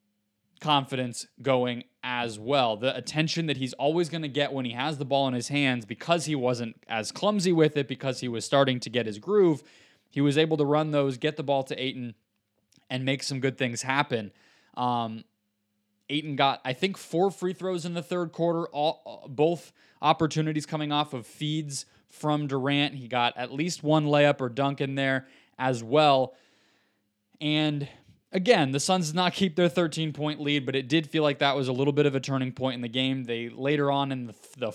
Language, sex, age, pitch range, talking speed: English, male, 20-39, 125-155 Hz, 205 wpm